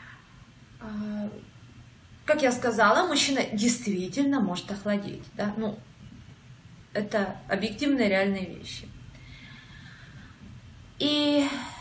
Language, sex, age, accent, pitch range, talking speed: Russian, female, 20-39, native, 205-285 Hz, 65 wpm